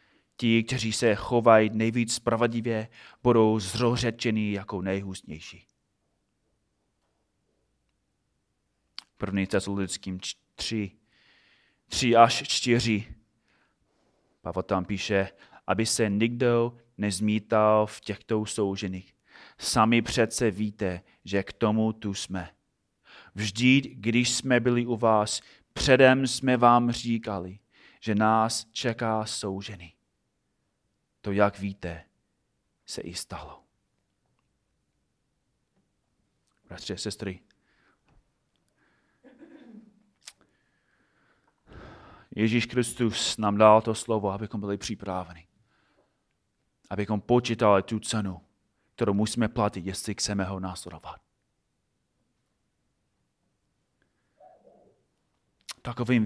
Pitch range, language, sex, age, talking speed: 100-115 Hz, Czech, male, 30-49, 85 wpm